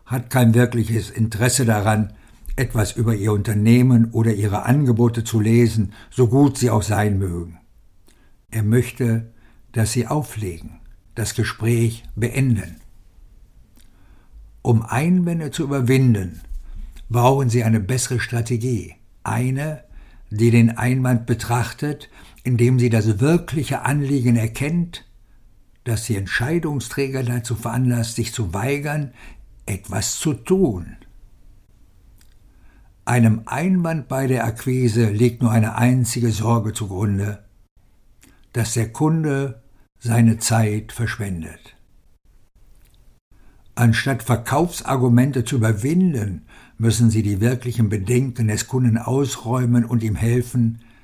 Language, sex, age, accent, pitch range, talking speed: German, male, 60-79, German, 105-125 Hz, 105 wpm